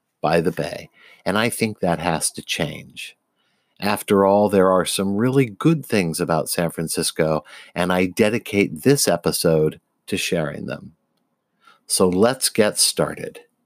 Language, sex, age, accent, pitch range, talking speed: English, male, 50-69, American, 85-115 Hz, 145 wpm